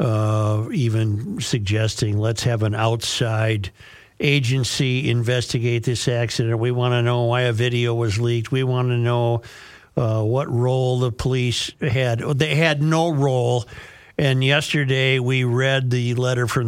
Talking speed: 150 wpm